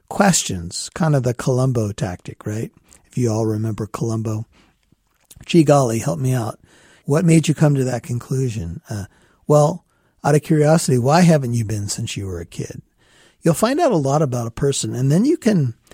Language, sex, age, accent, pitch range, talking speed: English, male, 50-69, American, 125-165 Hz, 190 wpm